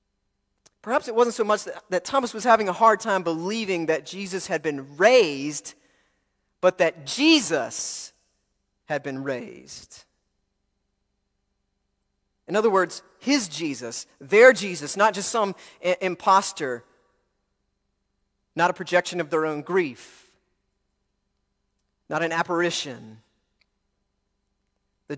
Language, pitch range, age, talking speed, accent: English, 140-215 Hz, 30-49, 110 wpm, American